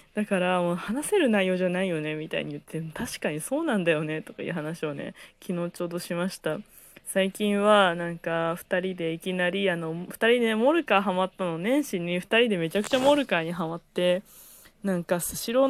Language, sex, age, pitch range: Japanese, female, 20-39, 170-215 Hz